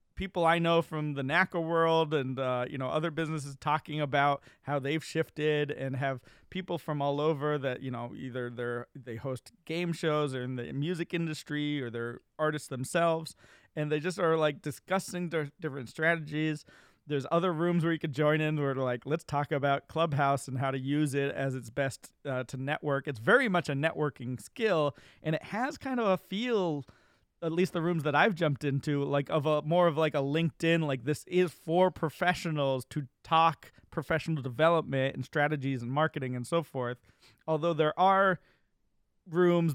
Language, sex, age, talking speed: English, male, 30-49, 190 wpm